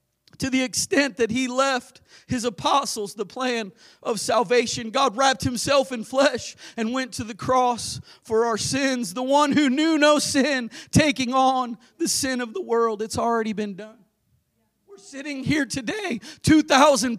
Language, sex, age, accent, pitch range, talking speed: English, male, 40-59, American, 190-265 Hz, 165 wpm